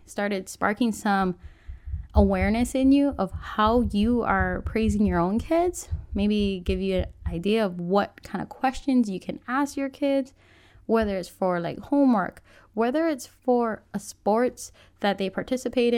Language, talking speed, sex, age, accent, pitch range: English, 160 wpm, female, 10-29, American, 195-270 Hz